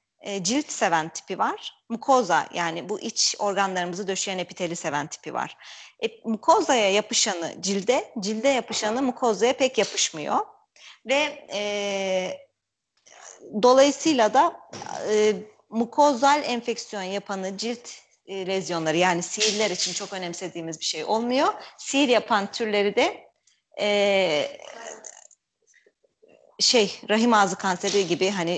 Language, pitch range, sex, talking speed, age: Turkish, 190-270 Hz, female, 110 wpm, 30-49